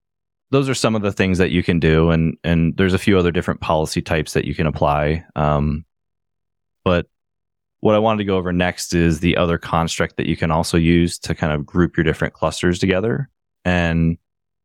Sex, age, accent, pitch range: male, 20-39, American, 80-95 Hz